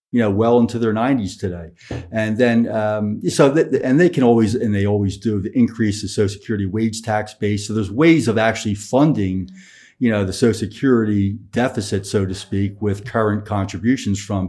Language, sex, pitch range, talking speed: English, male, 100-115 Hz, 195 wpm